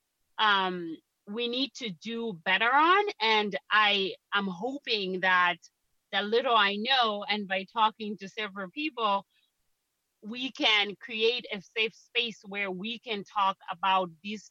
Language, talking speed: English, 140 wpm